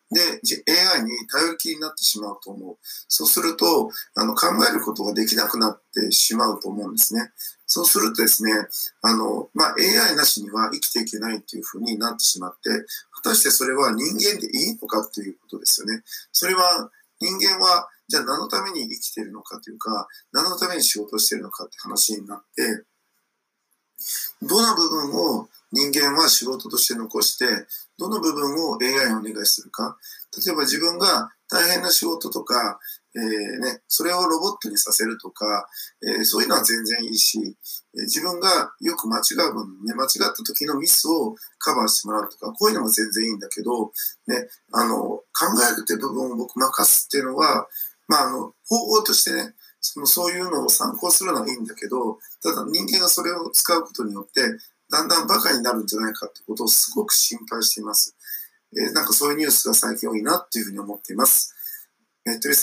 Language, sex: Japanese, male